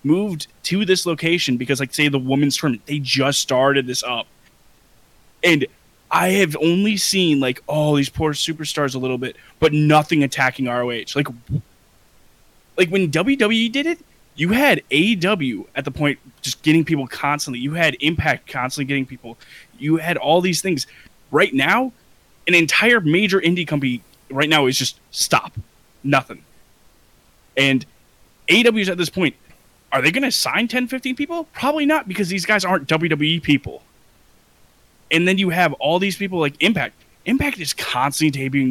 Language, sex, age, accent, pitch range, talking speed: English, male, 20-39, American, 130-180 Hz, 165 wpm